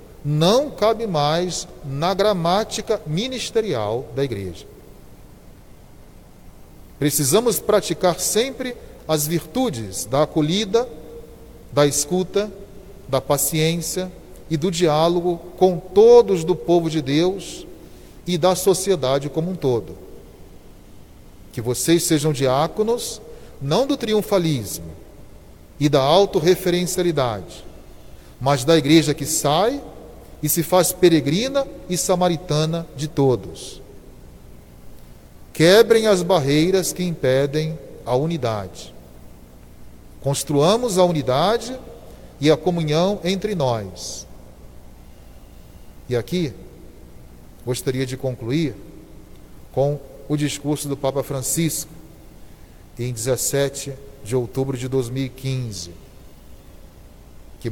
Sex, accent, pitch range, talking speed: male, Brazilian, 125-180 Hz, 95 wpm